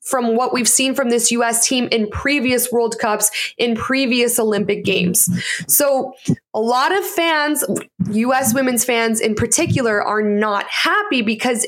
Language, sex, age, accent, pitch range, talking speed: English, female, 20-39, American, 225-300 Hz, 155 wpm